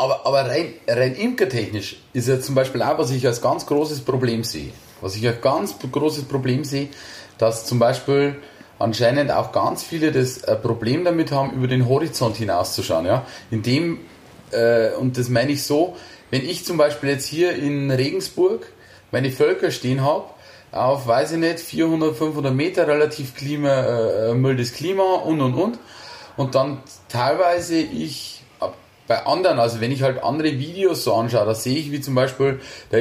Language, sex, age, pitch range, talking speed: German, male, 30-49, 120-150 Hz, 170 wpm